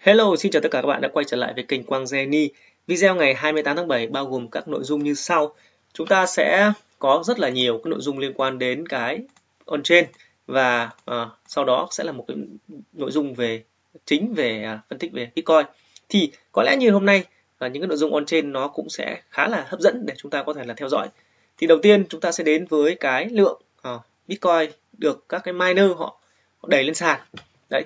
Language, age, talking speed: Vietnamese, 20-39, 240 wpm